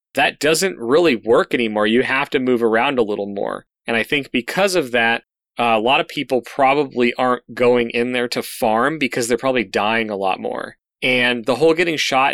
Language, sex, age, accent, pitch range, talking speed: English, male, 30-49, American, 110-130 Hz, 210 wpm